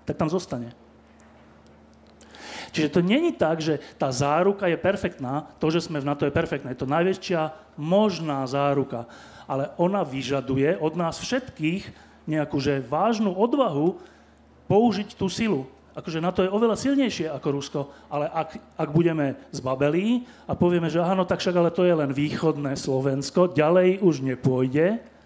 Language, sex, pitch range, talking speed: Slovak, male, 145-190 Hz, 150 wpm